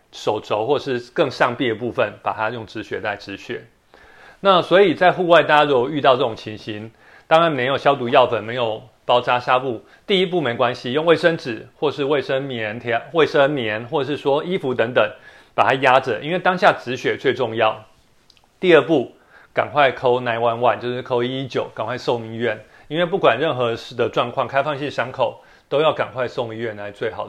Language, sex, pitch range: Chinese, male, 115-165 Hz